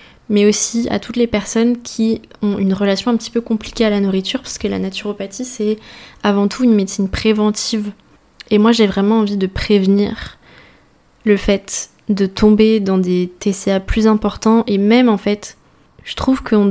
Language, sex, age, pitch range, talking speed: French, female, 20-39, 195-225 Hz, 180 wpm